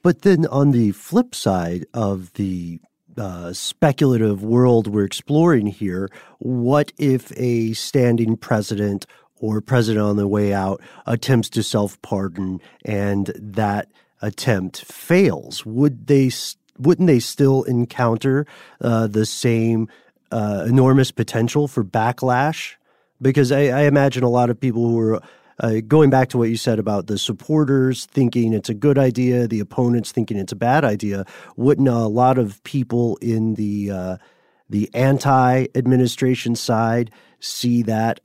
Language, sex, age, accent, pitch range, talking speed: English, male, 40-59, American, 105-130 Hz, 145 wpm